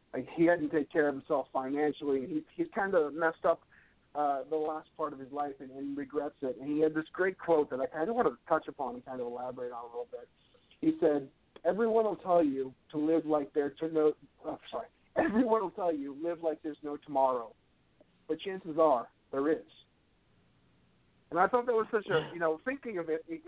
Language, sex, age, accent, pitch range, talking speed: English, male, 50-69, American, 145-175 Hz, 220 wpm